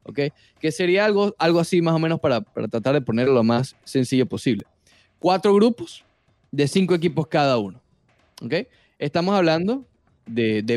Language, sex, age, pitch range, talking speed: Spanish, male, 10-29, 135-190 Hz, 165 wpm